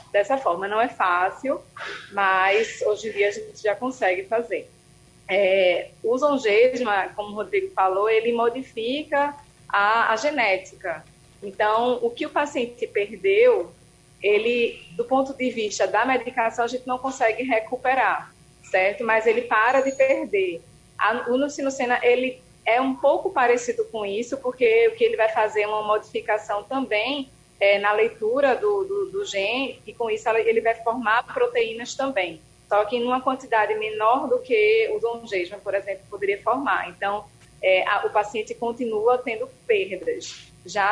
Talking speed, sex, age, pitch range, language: 155 wpm, female, 20-39, 210-285 Hz, Portuguese